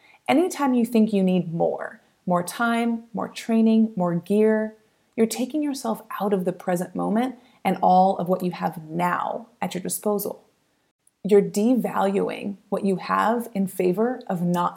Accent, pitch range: American, 185-230 Hz